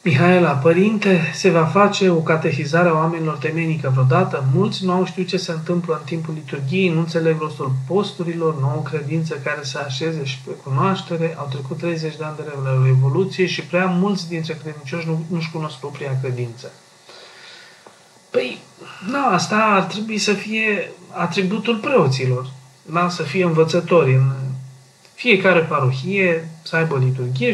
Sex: male